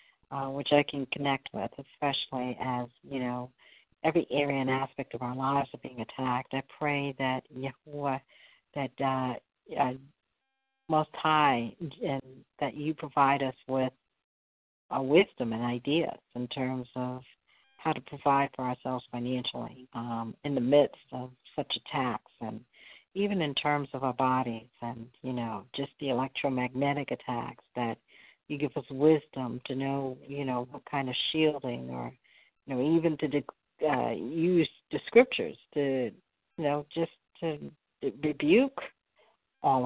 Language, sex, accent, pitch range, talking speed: English, female, American, 125-145 Hz, 150 wpm